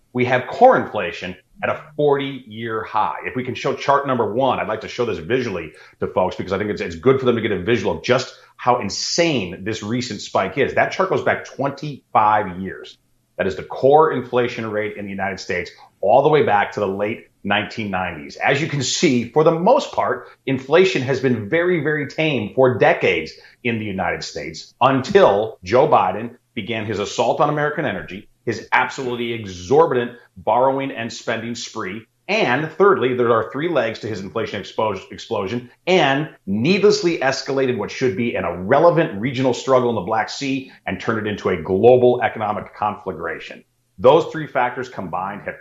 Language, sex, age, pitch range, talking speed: English, male, 30-49, 105-140 Hz, 185 wpm